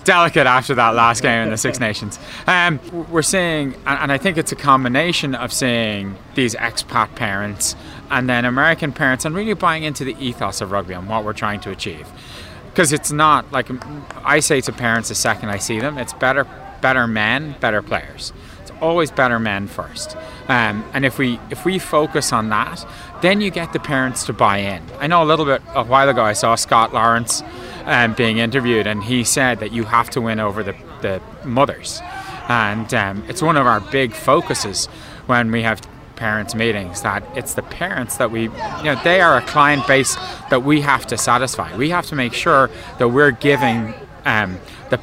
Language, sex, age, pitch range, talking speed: English, male, 30-49, 110-145 Hz, 200 wpm